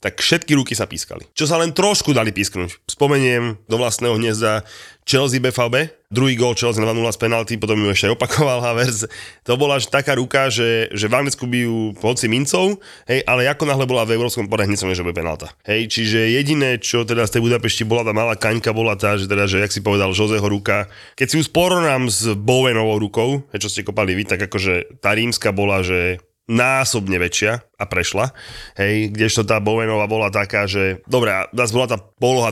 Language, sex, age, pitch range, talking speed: Slovak, male, 20-39, 100-125 Hz, 195 wpm